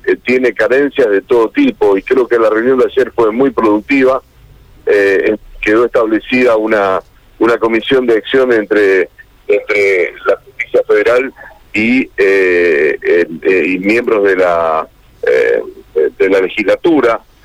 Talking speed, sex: 140 wpm, male